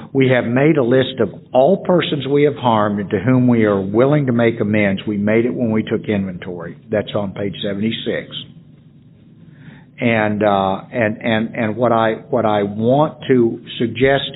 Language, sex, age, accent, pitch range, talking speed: English, male, 60-79, American, 105-135 Hz, 180 wpm